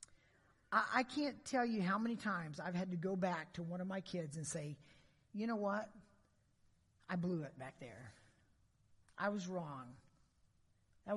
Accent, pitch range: American, 155-215 Hz